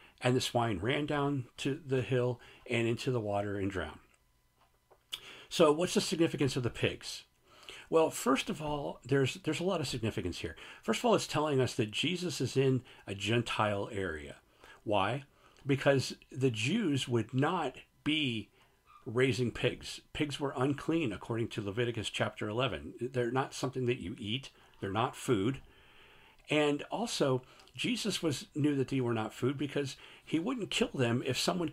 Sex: male